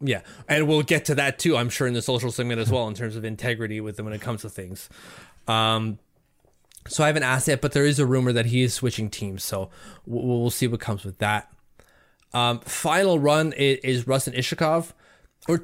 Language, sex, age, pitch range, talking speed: English, male, 20-39, 120-155 Hz, 220 wpm